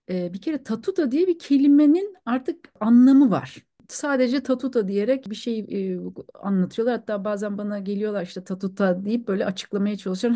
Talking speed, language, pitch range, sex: 150 wpm, Turkish, 190-260 Hz, female